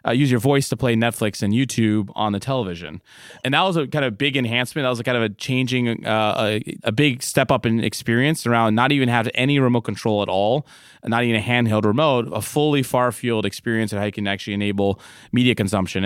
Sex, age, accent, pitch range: male, 20-39, American, 110-130 Hz